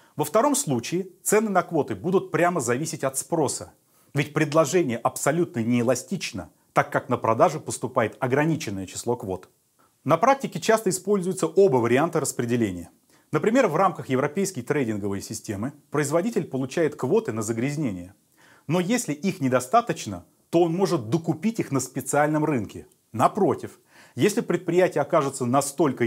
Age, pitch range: 30-49, 115-175 Hz